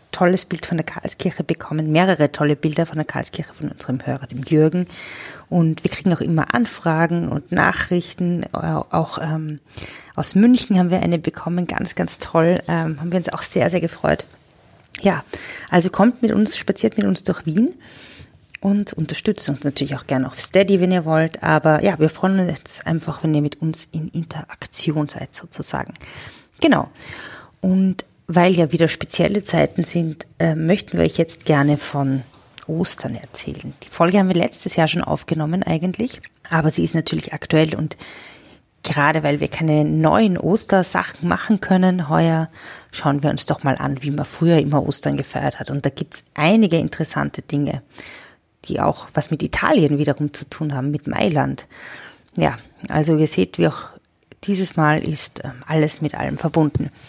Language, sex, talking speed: German, female, 170 wpm